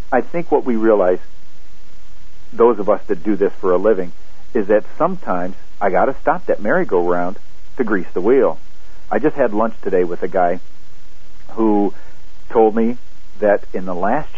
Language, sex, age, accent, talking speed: English, male, 60-79, American, 175 wpm